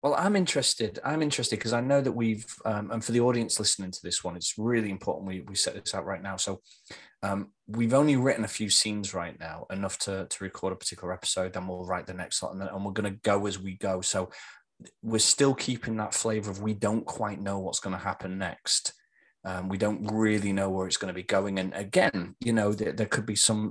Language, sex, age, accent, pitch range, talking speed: English, male, 20-39, British, 95-110 Hz, 250 wpm